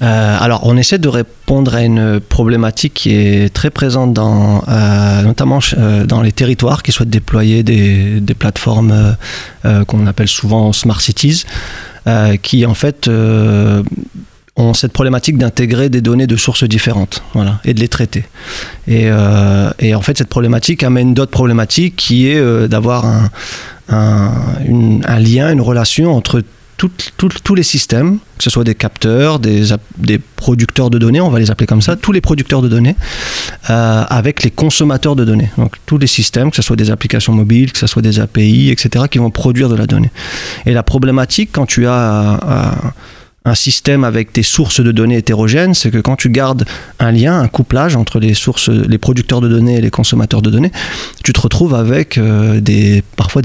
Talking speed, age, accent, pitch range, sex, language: 190 wpm, 30-49, French, 110-130 Hz, male, French